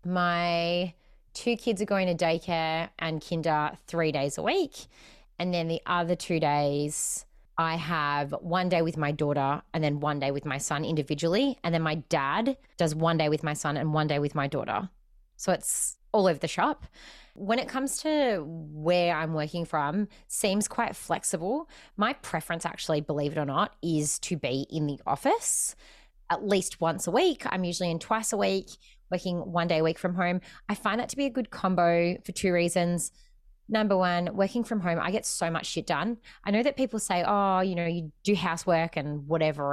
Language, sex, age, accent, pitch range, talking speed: English, female, 20-39, Australian, 155-200 Hz, 200 wpm